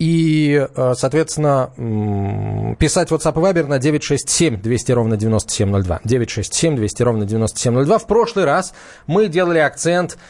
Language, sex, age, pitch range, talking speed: Russian, male, 20-39, 120-160 Hz, 115 wpm